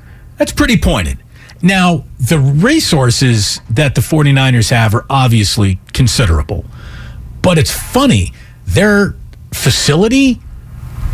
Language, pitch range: English, 110-160 Hz